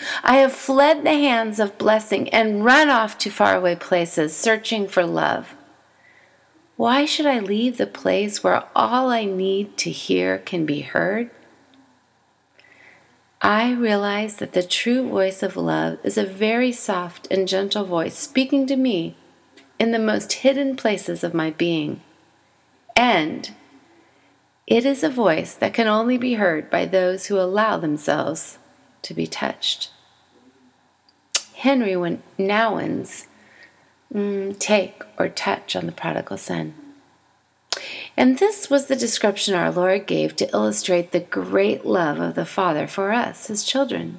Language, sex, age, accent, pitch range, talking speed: English, female, 30-49, American, 190-260 Hz, 140 wpm